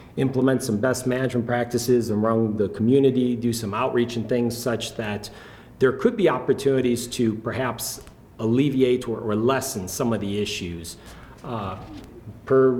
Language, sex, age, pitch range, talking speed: English, male, 40-59, 110-130 Hz, 140 wpm